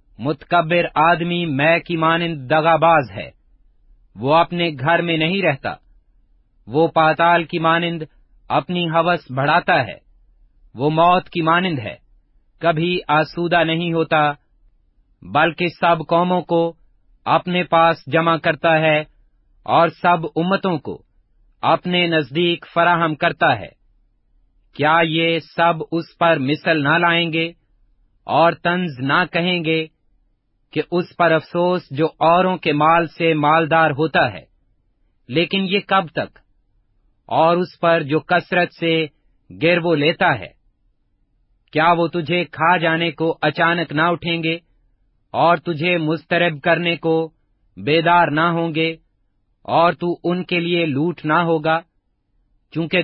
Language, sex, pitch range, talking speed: Urdu, male, 150-170 Hz, 130 wpm